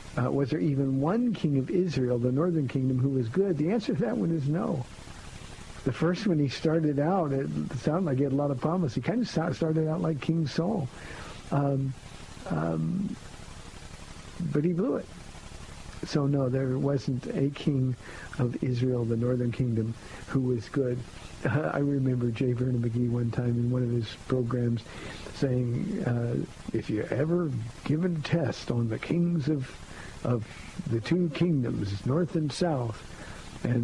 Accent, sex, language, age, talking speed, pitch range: American, male, English, 60-79, 170 wpm, 120-160 Hz